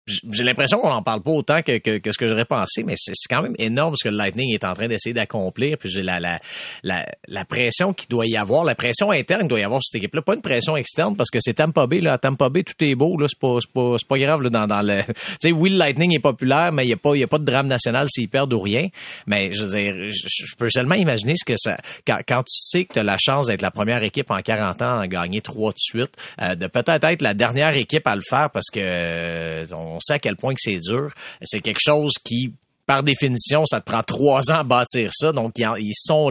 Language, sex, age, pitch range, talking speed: French, male, 30-49, 105-145 Hz, 280 wpm